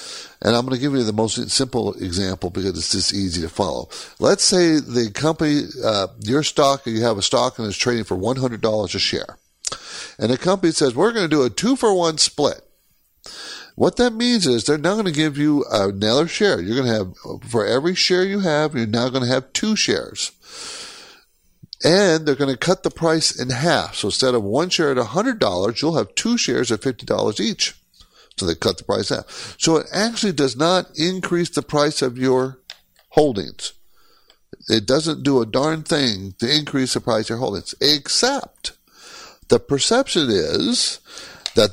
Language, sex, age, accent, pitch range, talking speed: English, male, 60-79, American, 110-160 Hz, 190 wpm